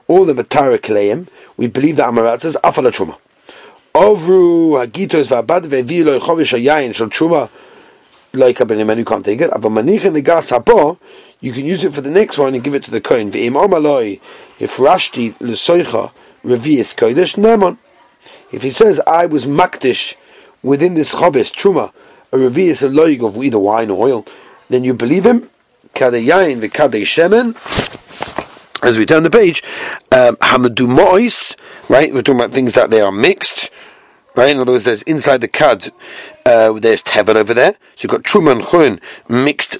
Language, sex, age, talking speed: English, male, 40-59, 170 wpm